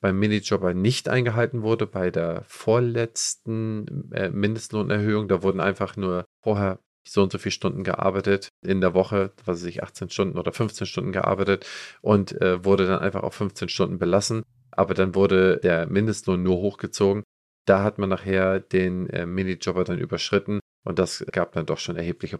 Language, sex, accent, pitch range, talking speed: German, male, German, 90-105 Hz, 160 wpm